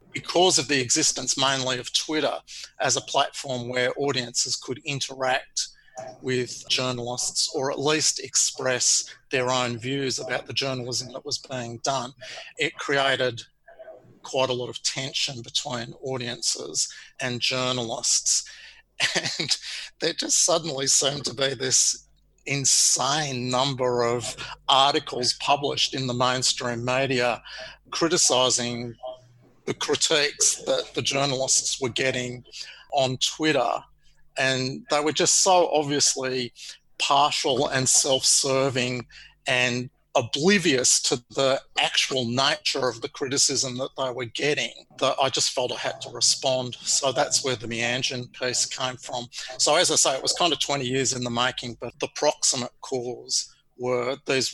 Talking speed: 140 wpm